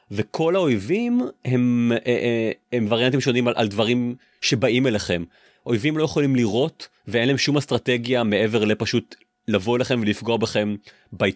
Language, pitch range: Hebrew, 100-125 Hz